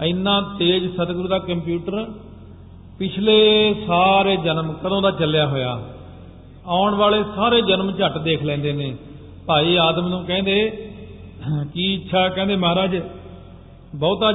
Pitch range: 145-190 Hz